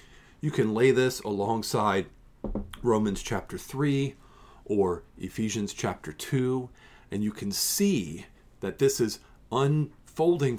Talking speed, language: 115 wpm, English